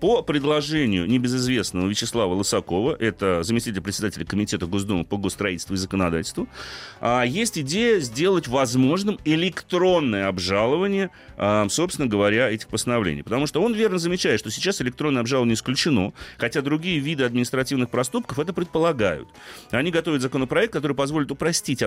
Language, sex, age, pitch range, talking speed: Russian, male, 30-49, 105-165 Hz, 130 wpm